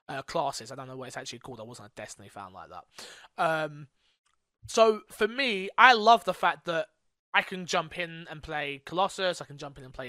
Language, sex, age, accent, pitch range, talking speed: English, male, 20-39, British, 150-195 Hz, 225 wpm